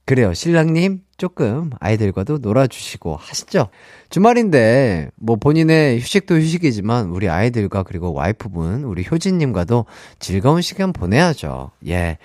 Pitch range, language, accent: 100-165 Hz, Korean, native